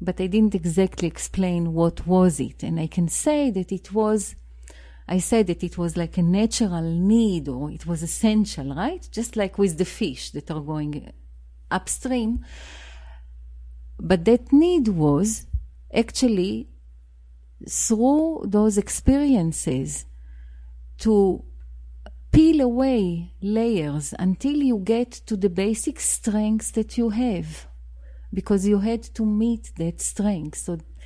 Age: 40-59